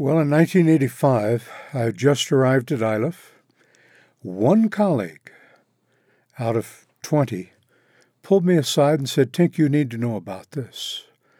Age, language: 60-79, English